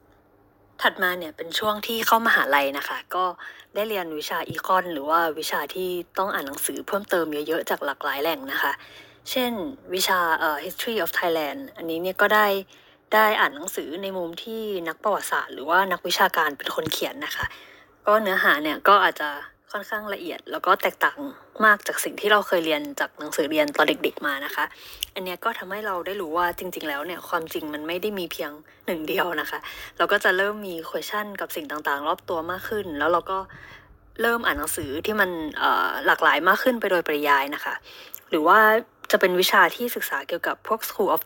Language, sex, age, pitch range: Thai, female, 20-39, 165-215 Hz